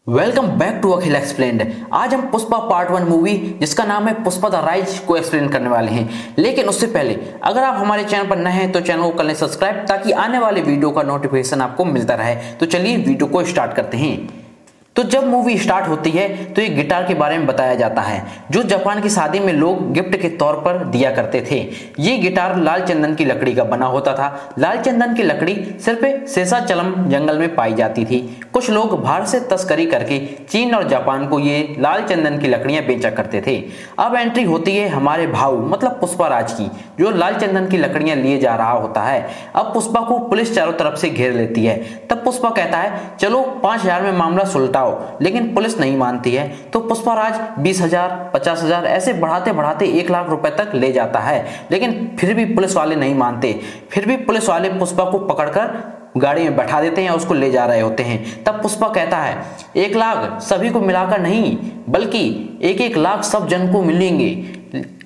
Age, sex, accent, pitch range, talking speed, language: 20-39, male, native, 150-215 Hz, 210 wpm, Hindi